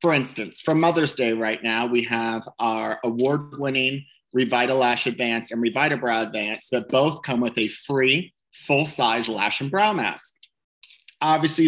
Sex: male